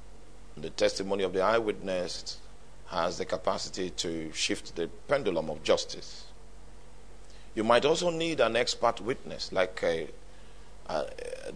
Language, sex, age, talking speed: English, male, 50-69, 125 wpm